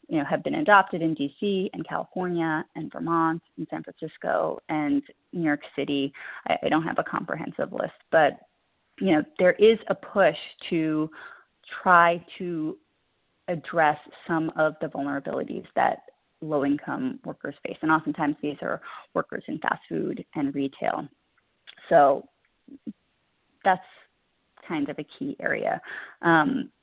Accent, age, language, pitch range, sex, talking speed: American, 30-49, English, 150-190 Hz, female, 140 wpm